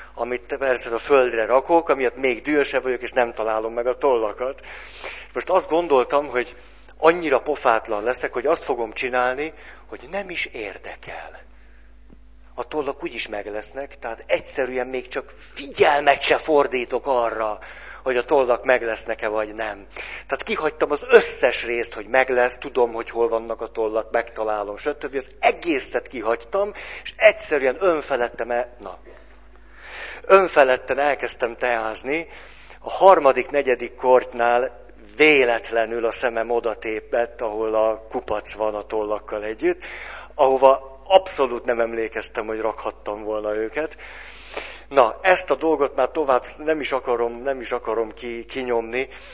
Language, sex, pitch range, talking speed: Hungarian, male, 110-140 Hz, 135 wpm